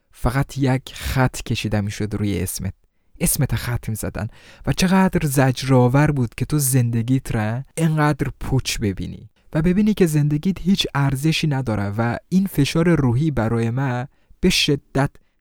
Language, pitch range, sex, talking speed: Persian, 105-135 Hz, male, 140 wpm